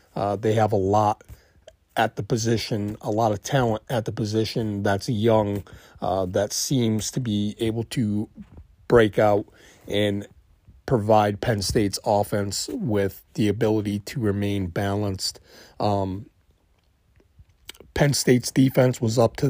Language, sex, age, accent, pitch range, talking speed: English, male, 40-59, American, 100-115 Hz, 135 wpm